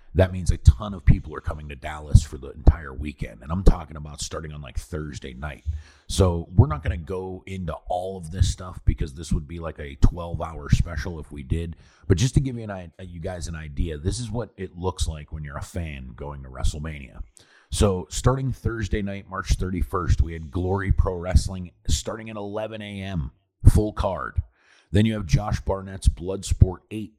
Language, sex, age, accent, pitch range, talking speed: English, male, 40-59, American, 80-100 Hz, 200 wpm